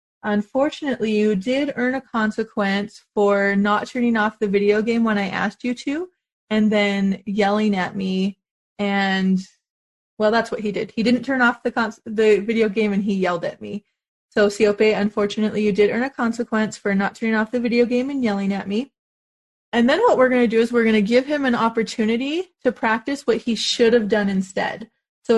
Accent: American